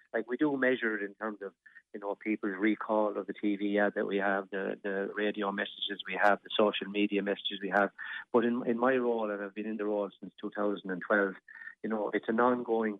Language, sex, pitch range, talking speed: English, male, 100-115 Hz, 250 wpm